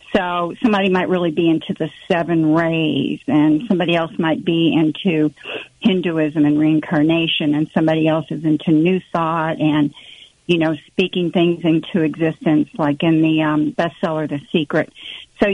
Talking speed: 155 wpm